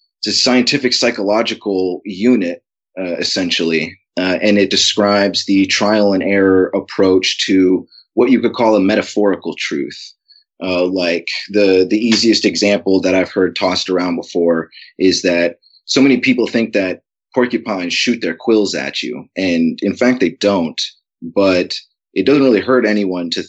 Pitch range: 95-120 Hz